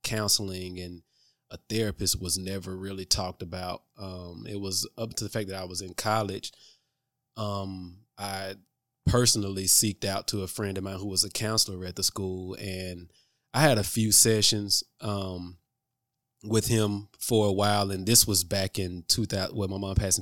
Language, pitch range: English, 95-110 Hz